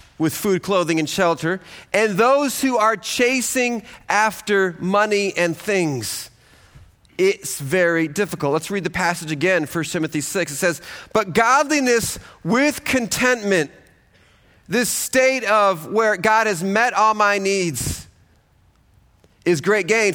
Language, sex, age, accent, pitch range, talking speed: English, male, 40-59, American, 170-230 Hz, 130 wpm